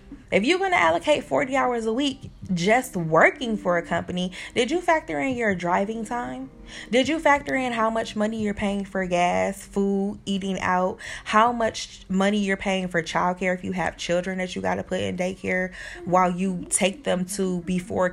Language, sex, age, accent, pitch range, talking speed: English, female, 20-39, American, 180-235 Hz, 195 wpm